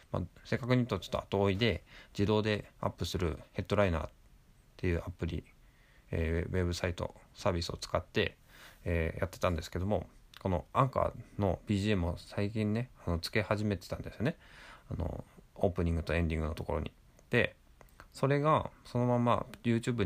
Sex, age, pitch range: male, 20-39, 85-115 Hz